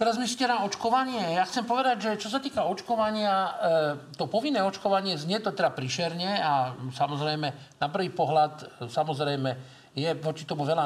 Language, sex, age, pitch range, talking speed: Slovak, male, 50-69, 145-185 Hz, 165 wpm